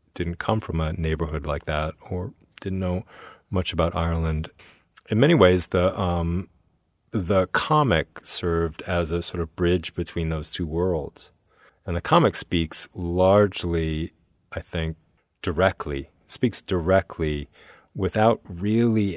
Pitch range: 80-95 Hz